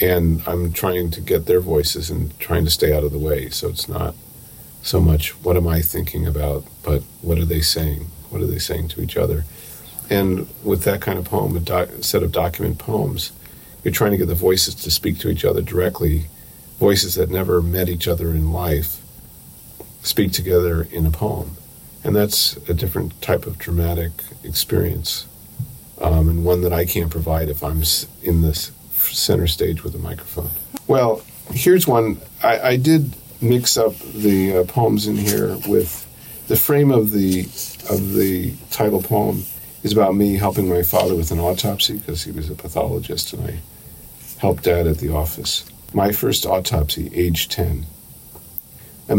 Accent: American